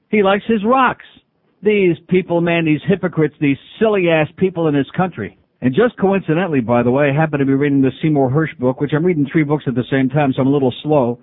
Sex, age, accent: male, 50-69, American